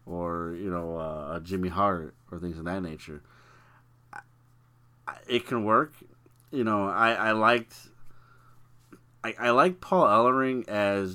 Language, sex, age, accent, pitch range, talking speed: English, male, 30-49, American, 95-125 Hz, 135 wpm